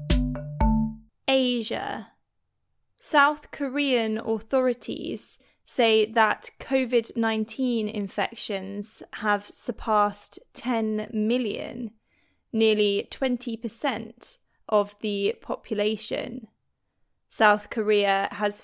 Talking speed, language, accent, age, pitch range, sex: 65 wpm, English, British, 20-39, 205-235 Hz, female